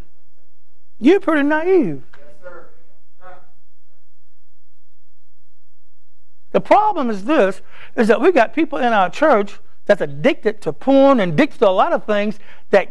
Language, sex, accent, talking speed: English, male, American, 125 wpm